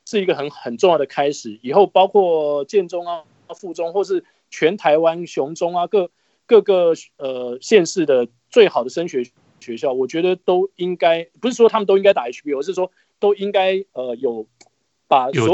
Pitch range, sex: 135-200 Hz, male